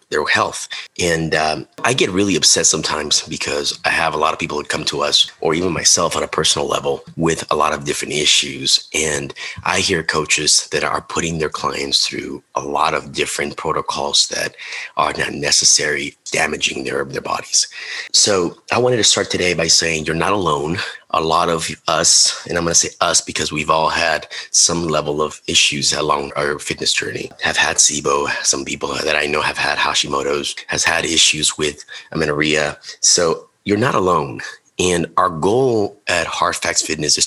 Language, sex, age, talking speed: English, male, 30-49, 185 wpm